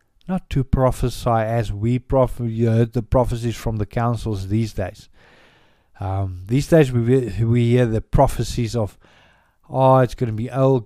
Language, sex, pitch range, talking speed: English, male, 105-130 Hz, 155 wpm